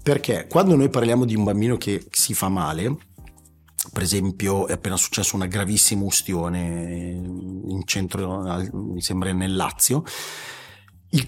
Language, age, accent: Italian, 30-49, native